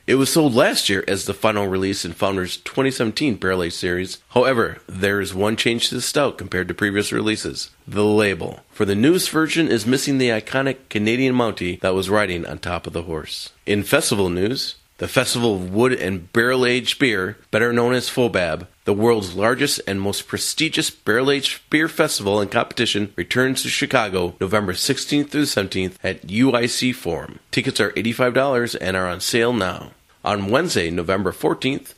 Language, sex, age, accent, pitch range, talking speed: English, male, 30-49, American, 95-125 Hz, 180 wpm